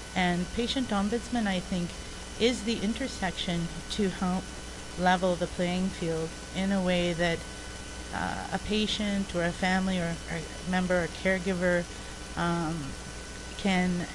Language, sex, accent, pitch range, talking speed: English, female, American, 165-190 Hz, 135 wpm